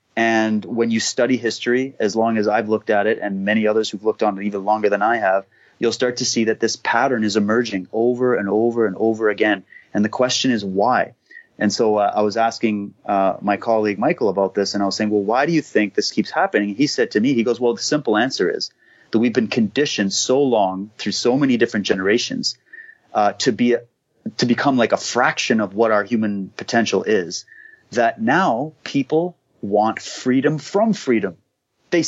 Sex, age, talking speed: male, 30-49, 215 wpm